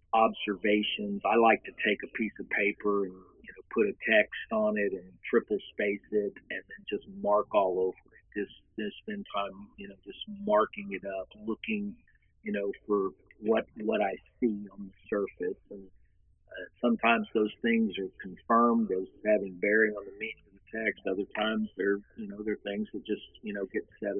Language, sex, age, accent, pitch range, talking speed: English, male, 50-69, American, 100-120 Hz, 195 wpm